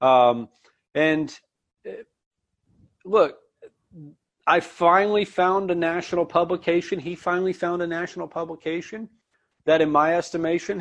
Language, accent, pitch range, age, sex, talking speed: English, American, 135-175 Hz, 30-49, male, 105 wpm